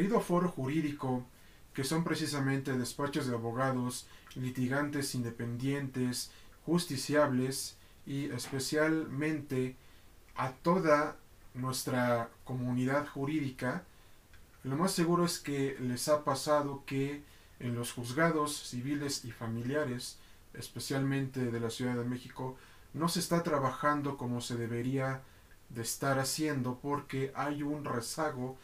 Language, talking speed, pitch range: Spanish, 115 wpm, 120-145 Hz